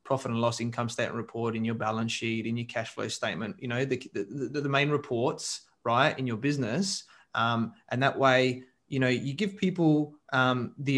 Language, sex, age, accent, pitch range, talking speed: English, male, 20-39, Australian, 115-135 Hz, 200 wpm